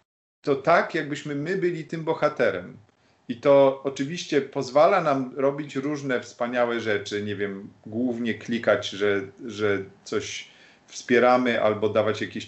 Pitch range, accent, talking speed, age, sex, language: 115-145 Hz, native, 130 wpm, 40-59, male, Polish